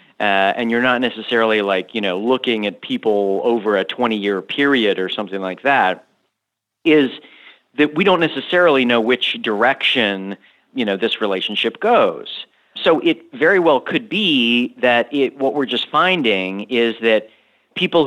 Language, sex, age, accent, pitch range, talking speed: English, male, 40-59, American, 115-145 Hz, 160 wpm